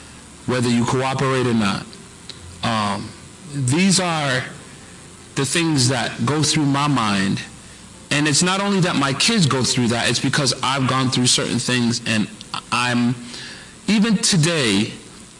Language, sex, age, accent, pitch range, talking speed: English, male, 40-59, American, 115-150 Hz, 140 wpm